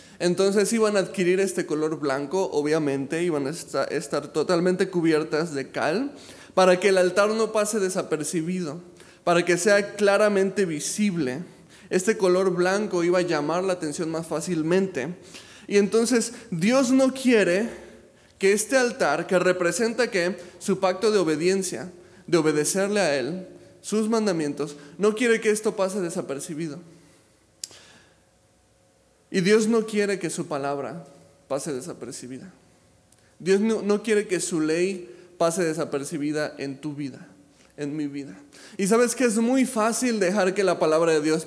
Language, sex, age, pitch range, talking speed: Spanish, male, 20-39, 165-210 Hz, 145 wpm